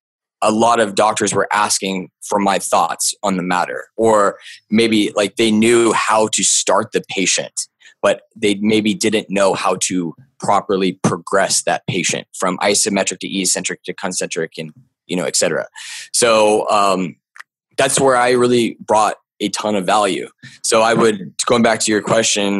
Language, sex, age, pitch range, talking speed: English, male, 20-39, 100-115 Hz, 165 wpm